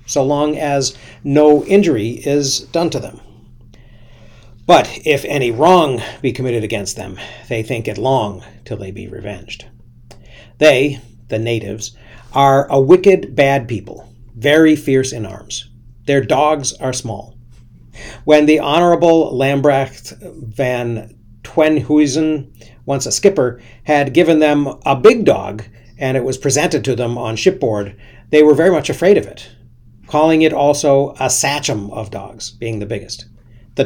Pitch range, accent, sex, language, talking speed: 115-145 Hz, American, male, English, 145 wpm